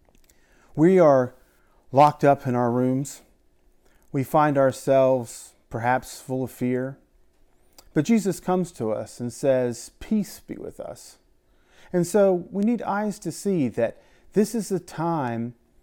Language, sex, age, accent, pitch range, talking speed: English, male, 40-59, American, 130-185 Hz, 140 wpm